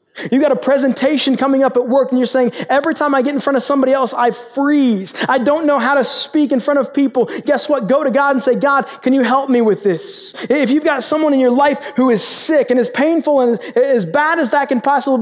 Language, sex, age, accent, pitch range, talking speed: English, male, 20-39, American, 235-280 Hz, 260 wpm